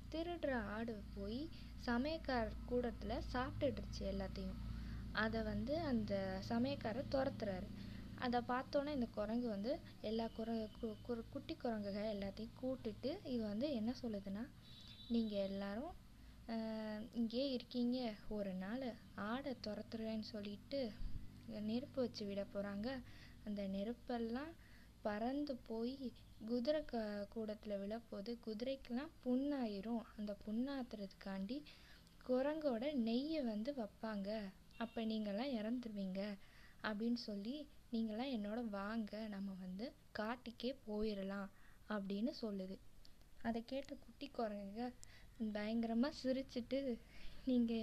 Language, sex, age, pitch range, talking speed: Tamil, female, 20-39, 210-255 Hz, 95 wpm